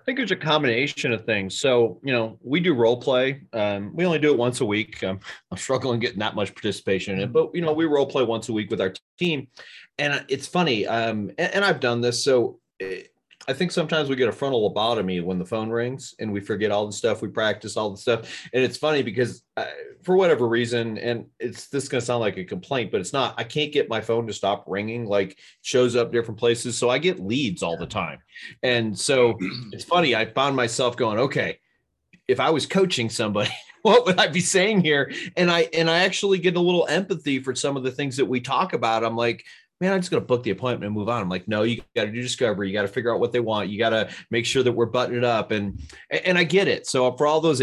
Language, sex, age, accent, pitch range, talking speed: English, male, 30-49, American, 110-150 Hz, 255 wpm